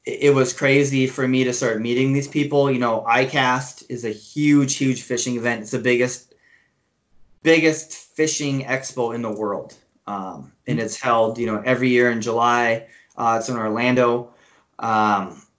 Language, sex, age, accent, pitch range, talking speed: English, male, 20-39, American, 120-135 Hz, 165 wpm